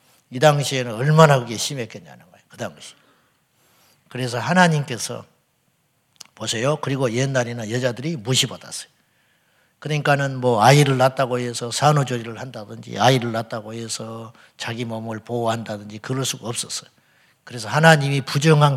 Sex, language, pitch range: male, Korean, 125-165 Hz